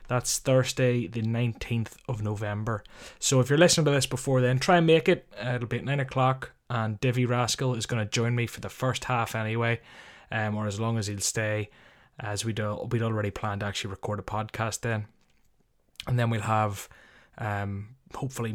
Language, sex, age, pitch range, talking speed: English, male, 20-39, 110-135 Hz, 195 wpm